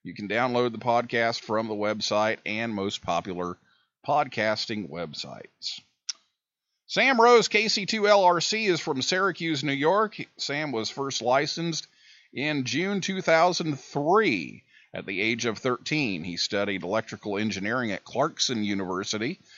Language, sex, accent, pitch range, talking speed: English, male, American, 115-175 Hz, 125 wpm